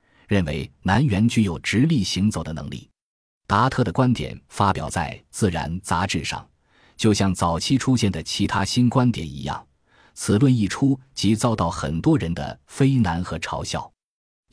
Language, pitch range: Chinese, 85-120 Hz